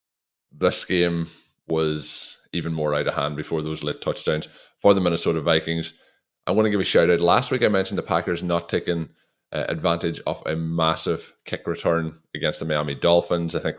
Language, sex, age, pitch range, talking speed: English, male, 20-39, 80-90 Hz, 185 wpm